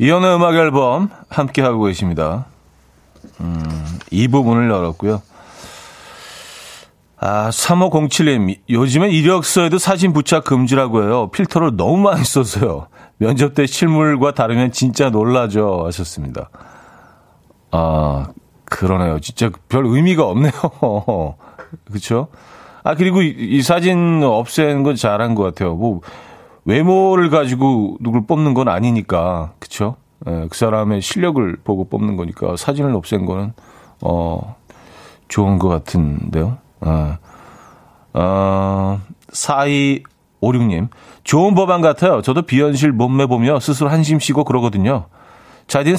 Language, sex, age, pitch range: Korean, male, 40-59, 95-150 Hz